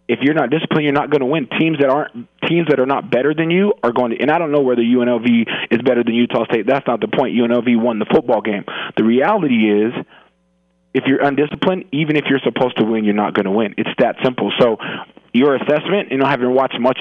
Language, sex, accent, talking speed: English, male, American, 240 wpm